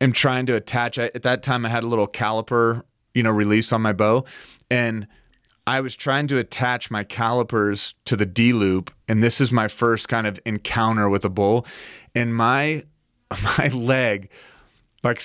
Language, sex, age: English, male, 30-49